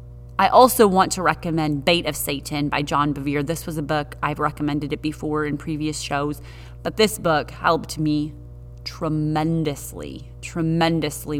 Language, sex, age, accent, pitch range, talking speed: English, female, 30-49, American, 135-170 Hz, 155 wpm